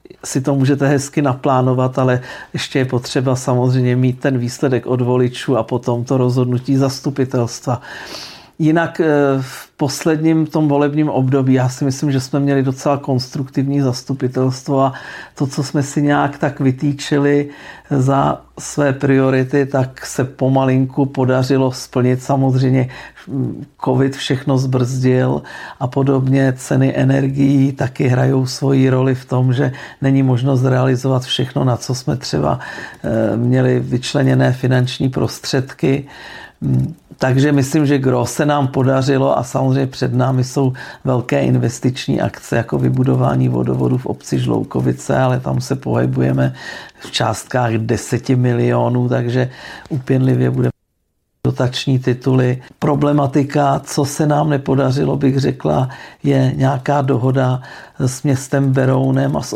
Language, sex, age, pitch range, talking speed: Czech, male, 50-69, 125-140 Hz, 130 wpm